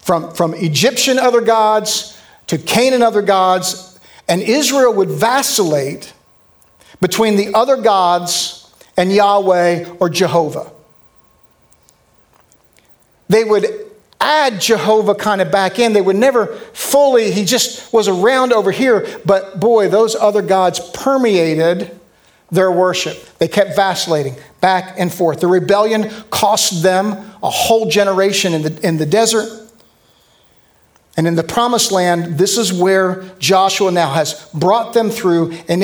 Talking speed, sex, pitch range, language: 130 wpm, male, 165-215 Hz, English